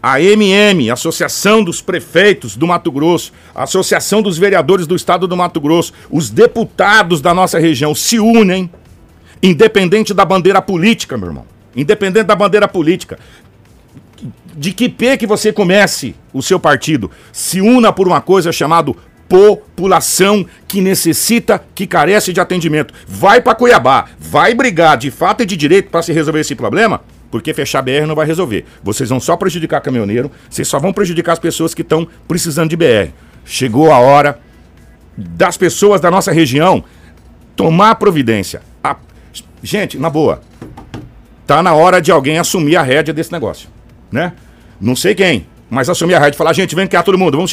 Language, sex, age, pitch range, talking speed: Portuguese, male, 60-79, 150-195 Hz, 170 wpm